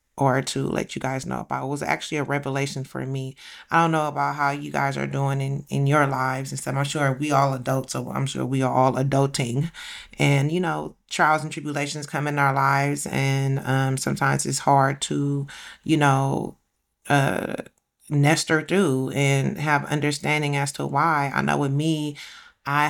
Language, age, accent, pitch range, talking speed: English, 30-49, American, 135-160 Hz, 195 wpm